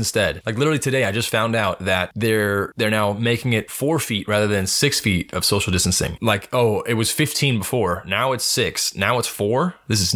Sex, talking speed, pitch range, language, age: male, 220 wpm, 100-125 Hz, English, 20-39